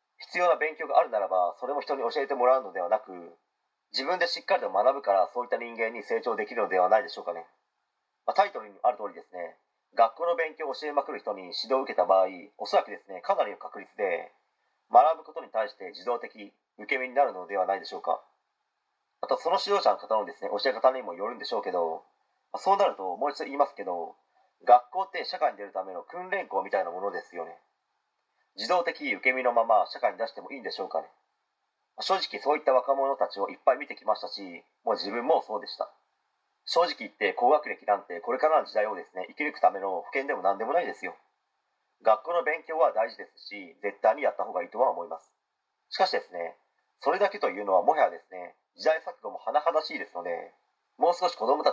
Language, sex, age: Japanese, male, 30-49